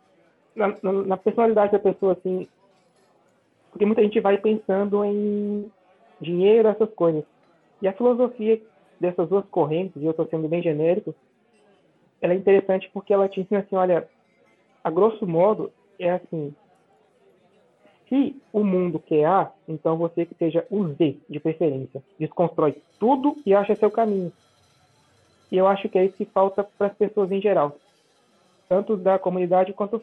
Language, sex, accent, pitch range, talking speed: Portuguese, male, Brazilian, 165-210 Hz, 160 wpm